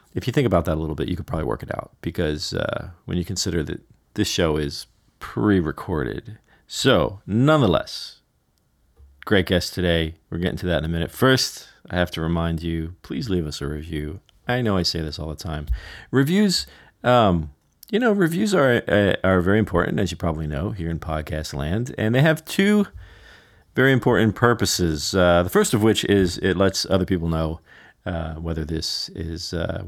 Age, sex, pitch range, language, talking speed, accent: 40-59, male, 85-120 Hz, English, 195 wpm, American